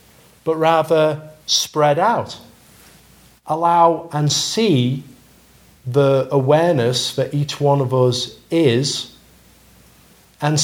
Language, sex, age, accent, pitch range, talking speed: English, male, 40-59, British, 120-150 Hz, 90 wpm